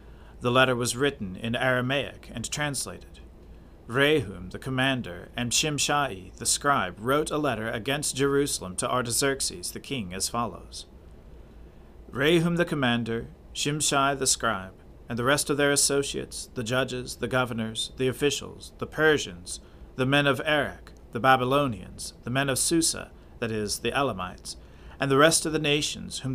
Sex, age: male, 40-59